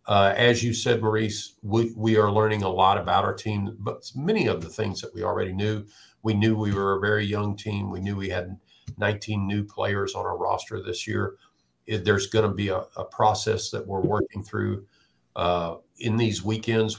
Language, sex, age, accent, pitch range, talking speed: English, male, 50-69, American, 90-110 Hz, 205 wpm